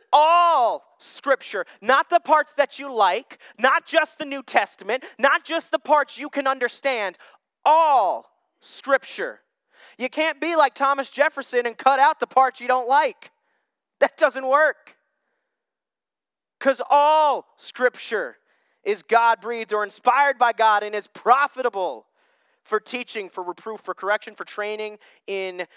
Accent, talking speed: American, 140 wpm